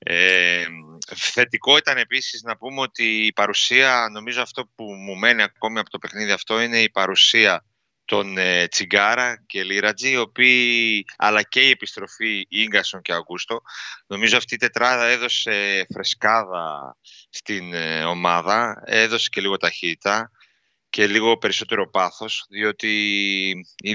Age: 30-49